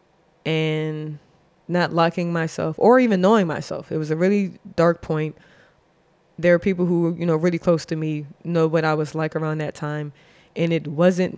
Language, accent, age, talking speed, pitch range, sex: English, American, 20-39, 190 wpm, 155-175 Hz, female